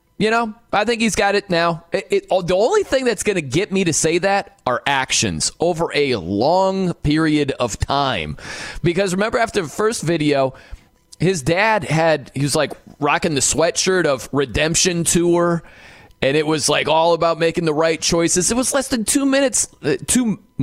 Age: 30-49